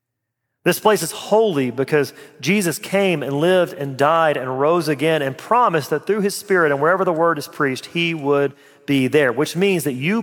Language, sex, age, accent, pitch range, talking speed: English, male, 40-59, American, 145-200 Hz, 200 wpm